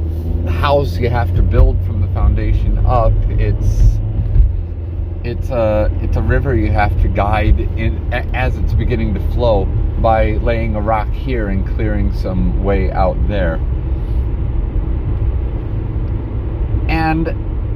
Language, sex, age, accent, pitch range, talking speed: English, male, 30-49, American, 85-110 Hz, 125 wpm